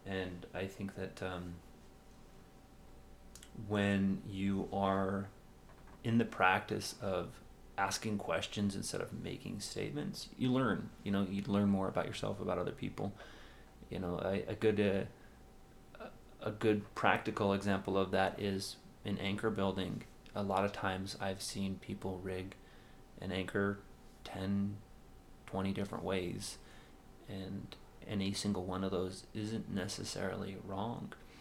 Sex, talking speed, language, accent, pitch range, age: male, 130 wpm, English, American, 95-105 Hz, 30-49